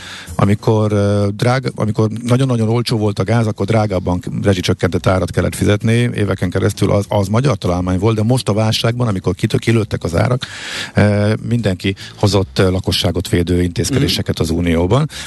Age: 50-69